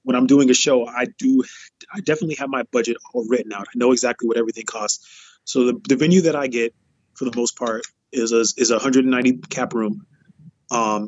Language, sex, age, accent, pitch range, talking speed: English, male, 20-39, American, 115-130 Hz, 215 wpm